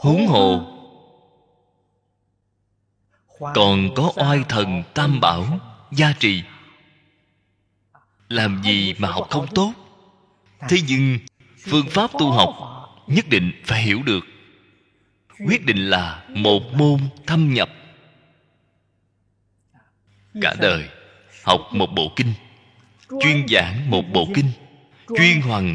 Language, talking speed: Vietnamese, 110 wpm